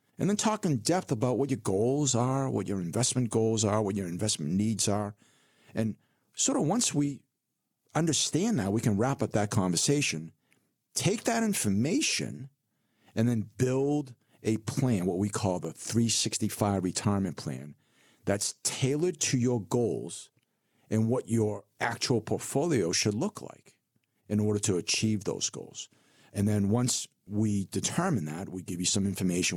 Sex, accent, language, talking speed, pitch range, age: male, American, English, 160 wpm, 95-125 Hz, 50-69